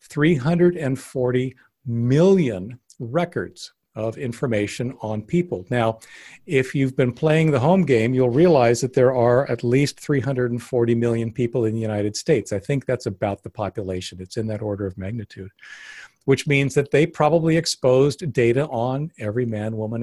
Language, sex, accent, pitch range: English, male, American, 110-145 Hz